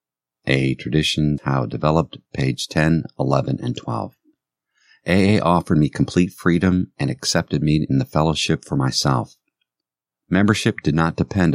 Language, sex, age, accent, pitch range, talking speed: English, male, 50-69, American, 65-85 Hz, 140 wpm